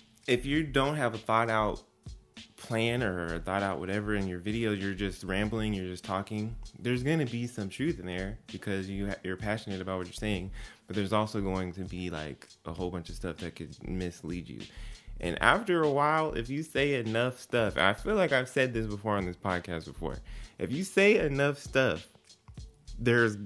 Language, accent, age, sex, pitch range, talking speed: English, American, 20-39, male, 90-115 Hz, 210 wpm